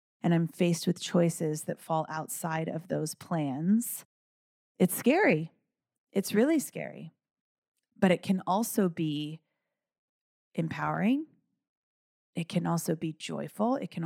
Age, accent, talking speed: 30-49, American, 125 wpm